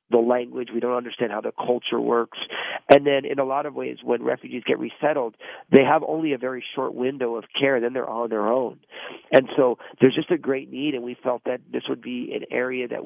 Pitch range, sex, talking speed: 120-140 Hz, male, 235 wpm